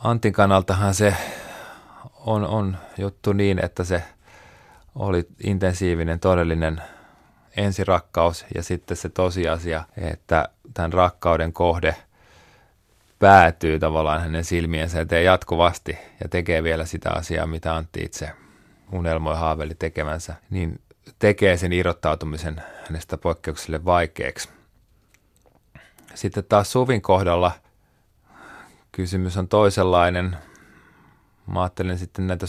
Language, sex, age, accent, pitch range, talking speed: Finnish, male, 30-49, native, 85-100 Hz, 105 wpm